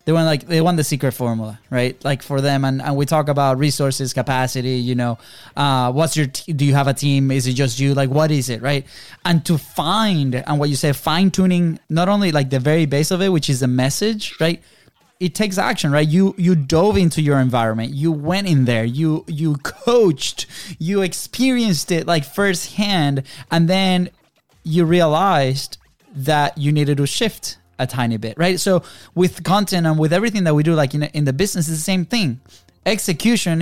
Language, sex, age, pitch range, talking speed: English, male, 20-39, 140-185 Hz, 205 wpm